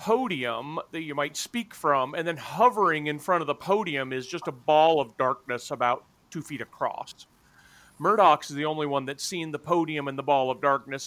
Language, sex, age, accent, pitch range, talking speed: English, male, 40-59, American, 130-180 Hz, 205 wpm